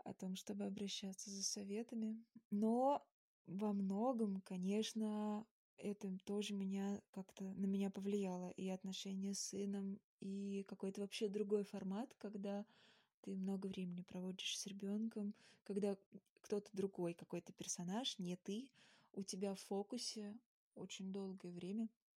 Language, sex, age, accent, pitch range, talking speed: Russian, female, 20-39, native, 195-220 Hz, 125 wpm